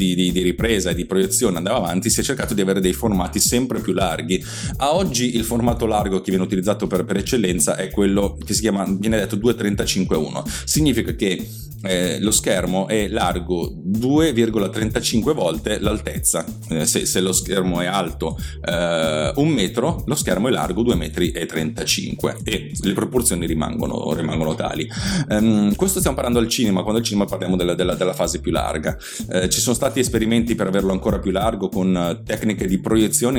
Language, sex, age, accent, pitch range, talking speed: Italian, male, 30-49, native, 90-115 Hz, 185 wpm